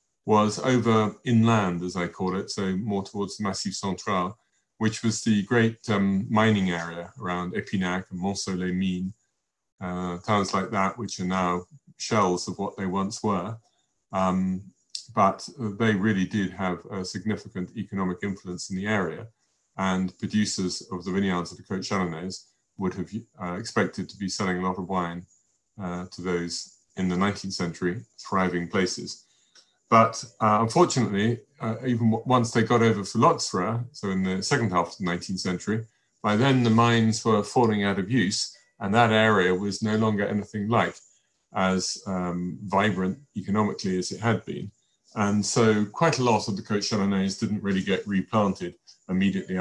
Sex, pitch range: male, 95-110 Hz